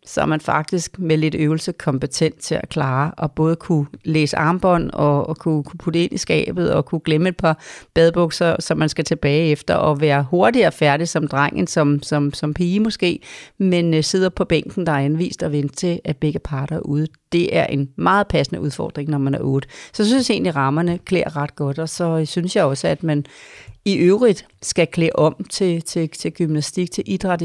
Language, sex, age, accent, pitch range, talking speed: Danish, female, 40-59, native, 155-185 Hz, 215 wpm